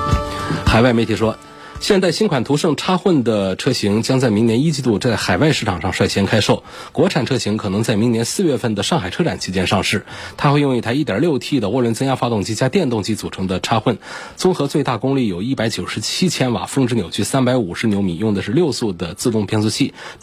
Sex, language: male, Chinese